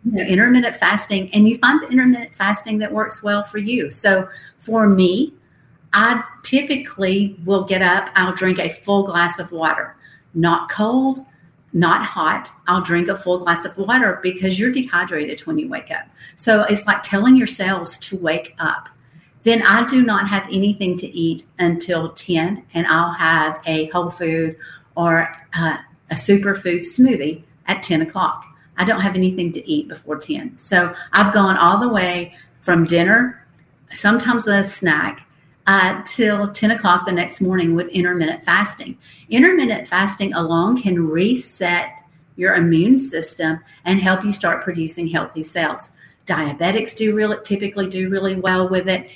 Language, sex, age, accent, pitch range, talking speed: English, female, 50-69, American, 170-210 Hz, 160 wpm